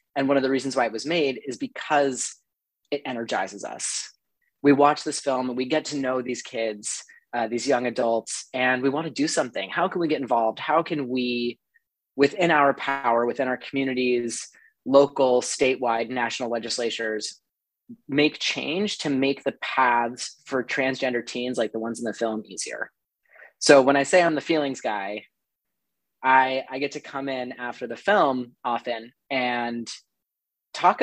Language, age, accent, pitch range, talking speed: English, 30-49, American, 120-145 Hz, 170 wpm